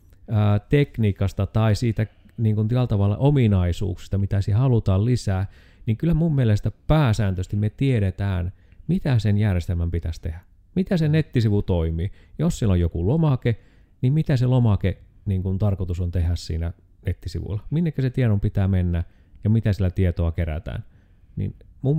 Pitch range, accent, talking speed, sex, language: 90-125 Hz, native, 150 wpm, male, Finnish